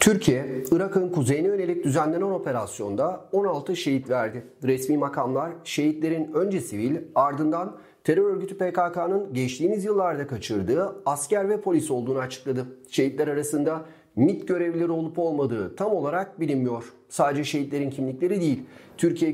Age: 40-59